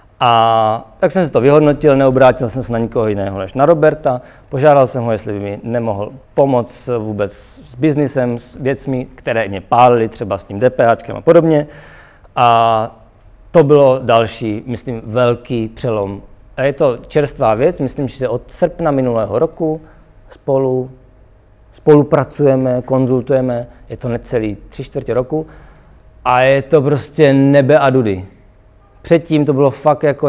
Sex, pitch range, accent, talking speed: male, 115-135 Hz, native, 155 wpm